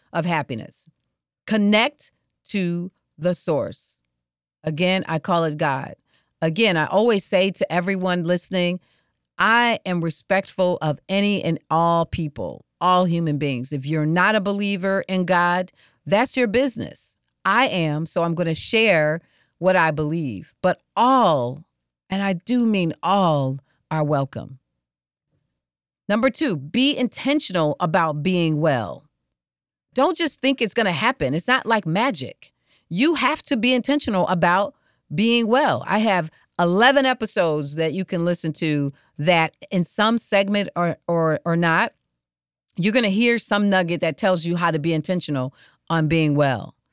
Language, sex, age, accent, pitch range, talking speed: English, female, 40-59, American, 160-215 Hz, 150 wpm